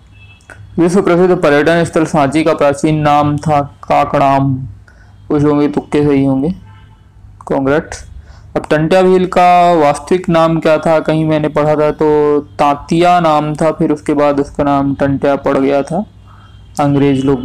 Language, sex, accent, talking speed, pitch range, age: Hindi, male, native, 150 wpm, 140-155 Hz, 20-39